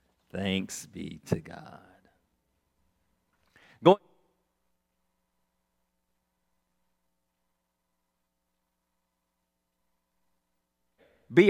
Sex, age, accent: male, 50-69, American